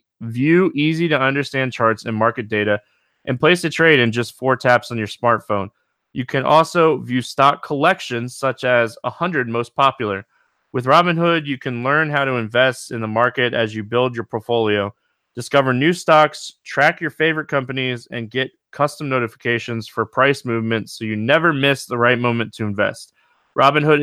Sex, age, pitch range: male, 20-39, 120-150 Hz